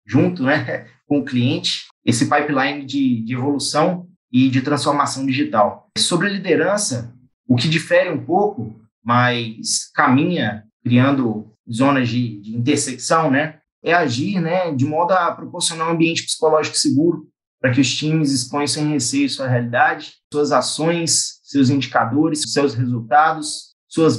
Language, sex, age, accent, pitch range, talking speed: Portuguese, male, 20-39, Brazilian, 125-155 Hz, 140 wpm